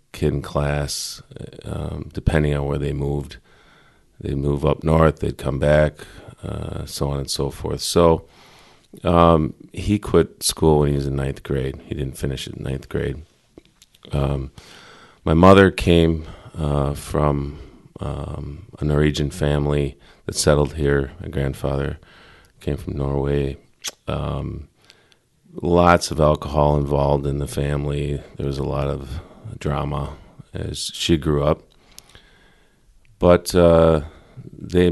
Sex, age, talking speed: male, 40-59, 135 wpm